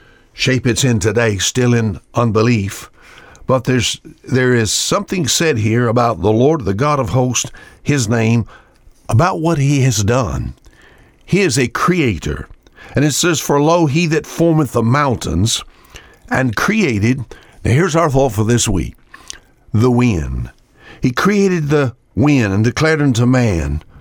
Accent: American